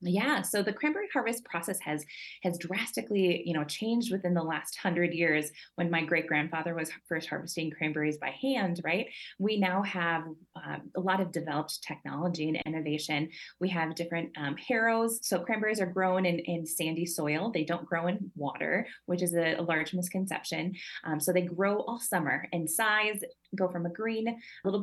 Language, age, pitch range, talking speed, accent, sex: English, 20-39, 165-195 Hz, 180 wpm, American, female